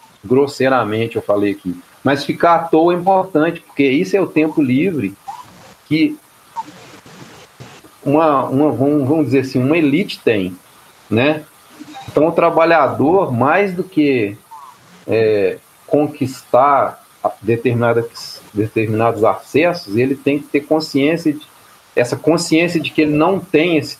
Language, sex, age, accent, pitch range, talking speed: Portuguese, male, 40-59, Brazilian, 130-170 Hz, 130 wpm